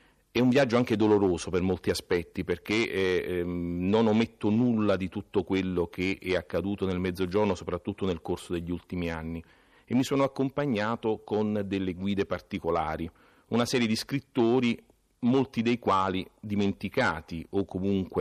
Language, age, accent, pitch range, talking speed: Italian, 40-59, native, 90-105 Hz, 150 wpm